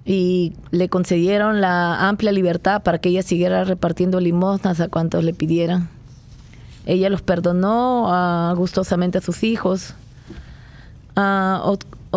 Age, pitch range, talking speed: 20-39, 175-205 Hz, 125 wpm